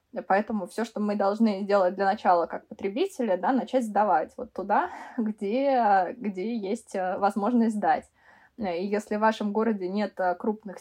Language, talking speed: Russian, 150 wpm